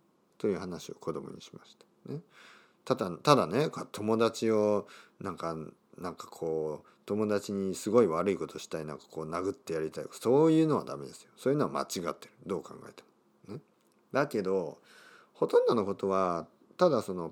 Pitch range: 90-145 Hz